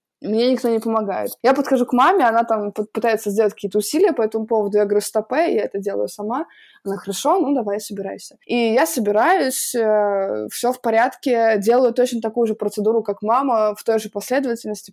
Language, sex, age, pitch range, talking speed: Russian, female, 20-39, 205-235 Hz, 185 wpm